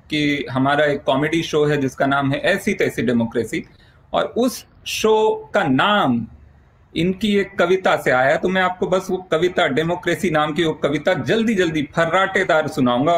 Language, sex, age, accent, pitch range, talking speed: Hindi, male, 40-59, native, 140-205 Hz, 170 wpm